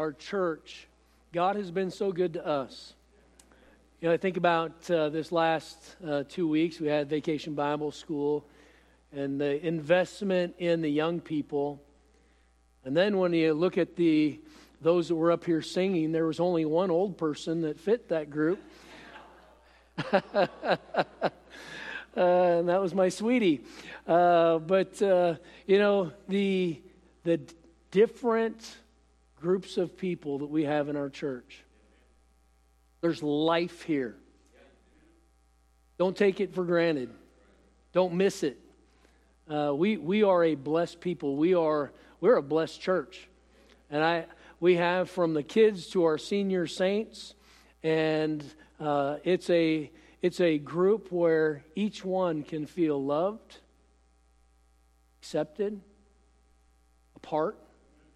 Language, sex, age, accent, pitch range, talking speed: English, male, 50-69, American, 145-180 Hz, 130 wpm